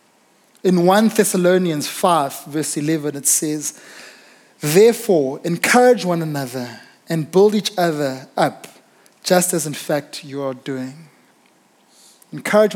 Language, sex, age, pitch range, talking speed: English, male, 20-39, 150-185 Hz, 120 wpm